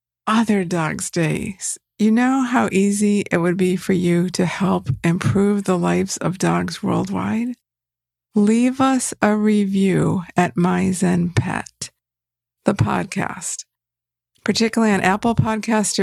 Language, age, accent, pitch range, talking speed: English, 50-69, American, 170-215 Hz, 125 wpm